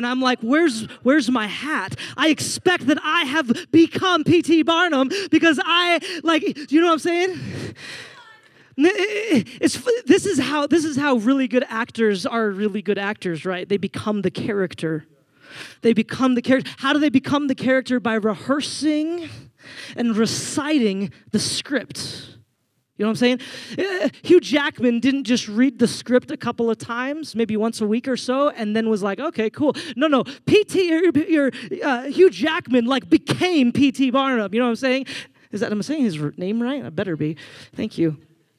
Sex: male